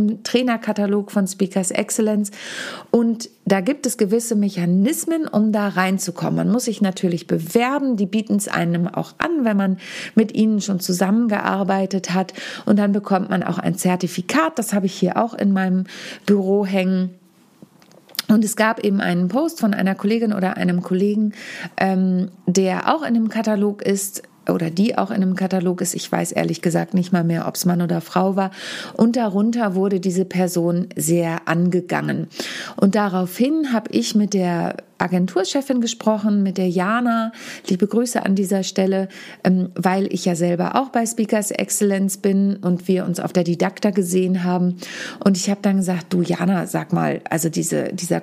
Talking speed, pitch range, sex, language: 170 wpm, 180-215 Hz, female, German